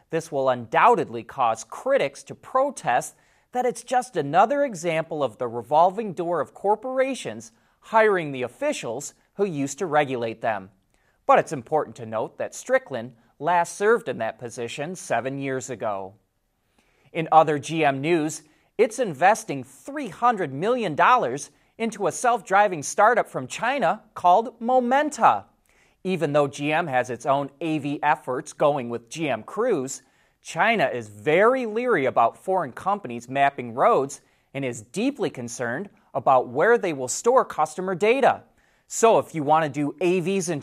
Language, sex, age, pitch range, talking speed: English, male, 30-49, 135-215 Hz, 145 wpm